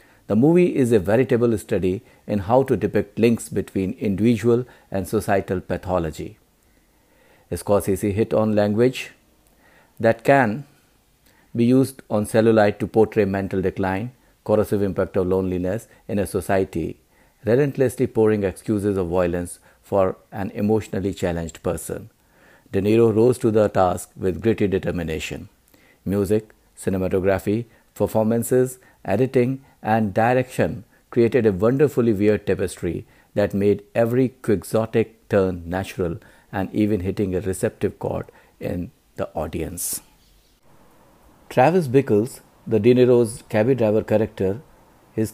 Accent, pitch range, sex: Indian, 95-120 Hz, male